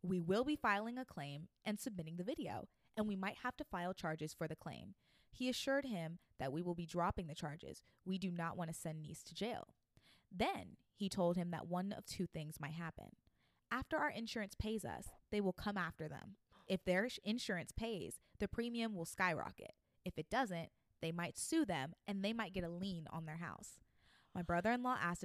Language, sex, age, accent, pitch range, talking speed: English, female, 20-39, American, 165-215 Hz, 205 wpm